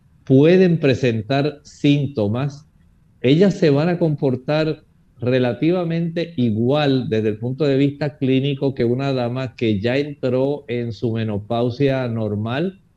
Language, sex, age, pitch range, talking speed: Spanish, male, 50-69, 120-150 Hz, 120 wpm